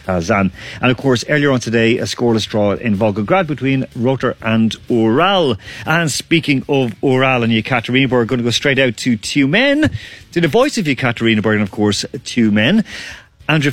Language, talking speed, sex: English, 185 wpm, male